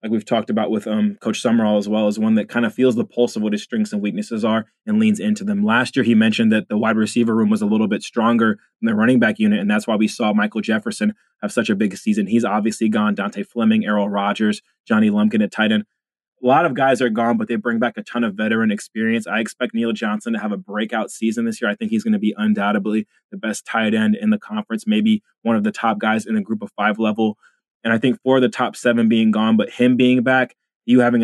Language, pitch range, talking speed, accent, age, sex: English, 110-130 Hz, 265 wpm, American, 20-39, male